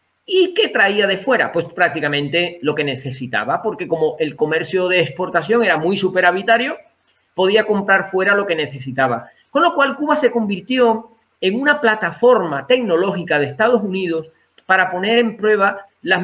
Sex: male